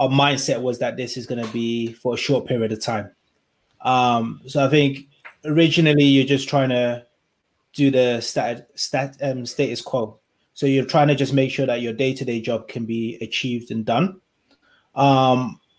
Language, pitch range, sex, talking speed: English, 120-140 Hz, male, 170 wpm